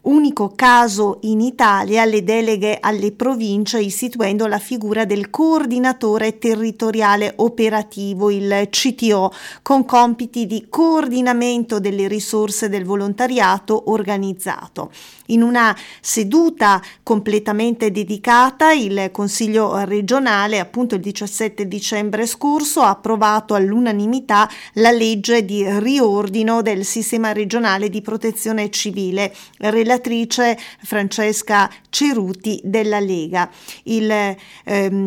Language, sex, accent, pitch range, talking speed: Italian, female, native, 205-235 Hz, 100 wpm